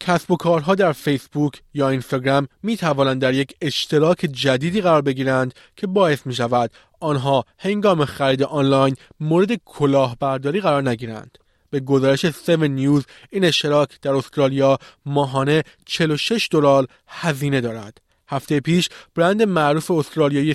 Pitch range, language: 135-165 Hz, Persian